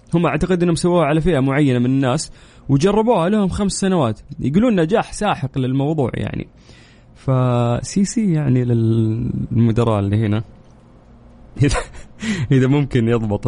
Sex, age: male, 20-39